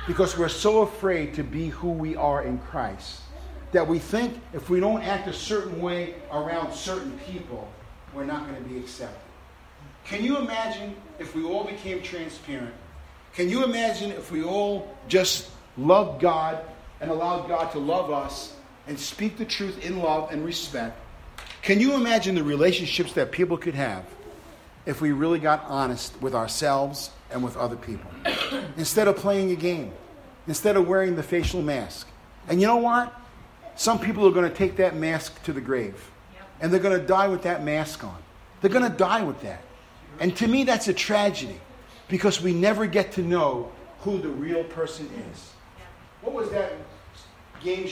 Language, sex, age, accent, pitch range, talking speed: English, male, 50-69, American, 145-200 Hz, 180 wpm